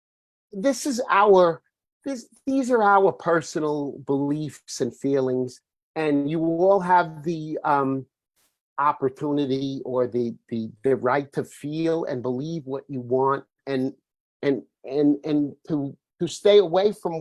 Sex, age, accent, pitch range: male, 50-69, American, 130-165 Hz